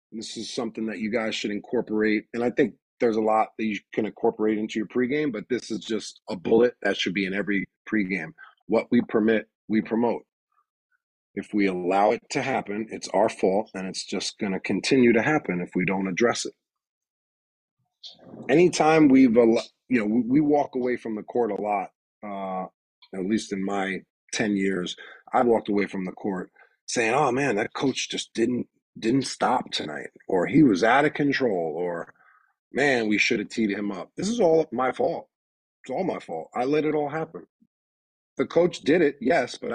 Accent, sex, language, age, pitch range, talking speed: American, male, English, 30-49, 100-130 Hz, 195 wpm